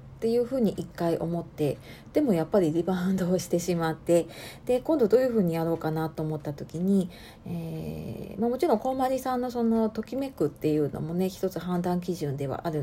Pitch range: 160-230 Hz